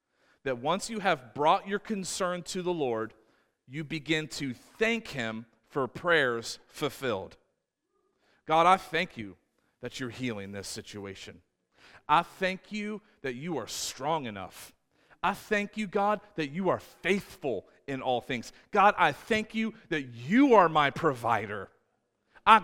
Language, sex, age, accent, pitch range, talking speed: English, male, 40-59, American, 160-225 Hz, 150 wpm